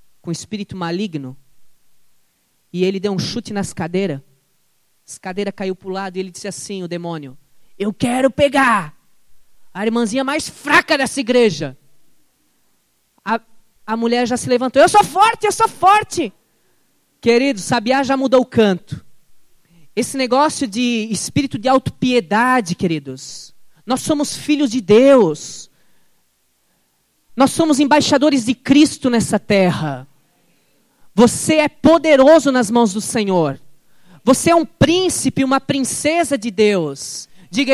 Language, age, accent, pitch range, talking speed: Portuguese, 20-39, Brazilian, 190-295 Hz, 135 wpm